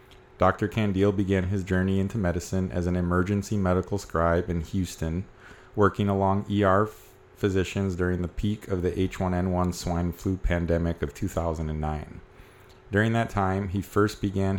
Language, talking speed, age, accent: English, 145 wpm, 30-49, American